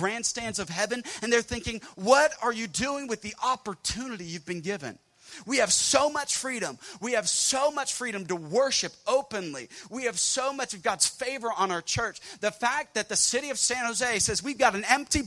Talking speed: 205 wpm